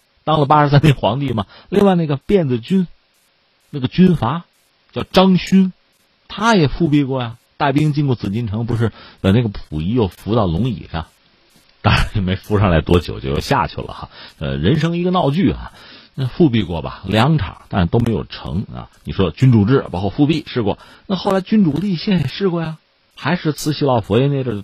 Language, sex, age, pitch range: Chinese, male, 50-69, 100-155 Hz